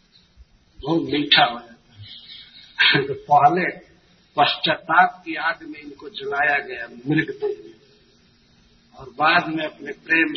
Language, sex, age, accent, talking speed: Hindi, male, 60-79, native, 115 wpm